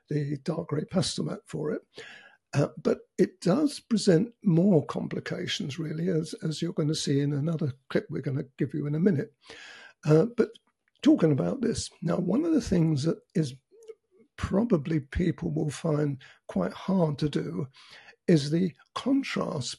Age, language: 60-79, English